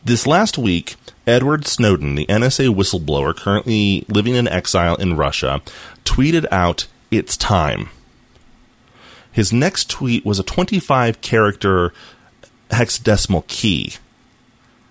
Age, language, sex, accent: 30-49, English, male, American